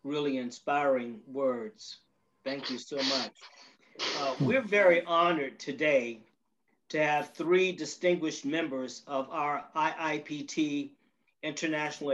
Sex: male